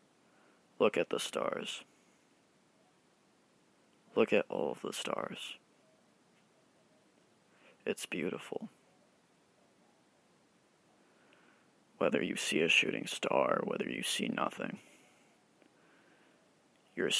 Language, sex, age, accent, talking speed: English, male, 20-39, American, 80 wpm